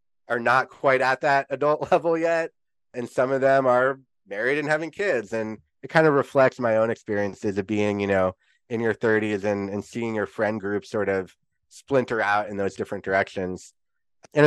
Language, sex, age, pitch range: English, male, 20-39, 105-135 Hz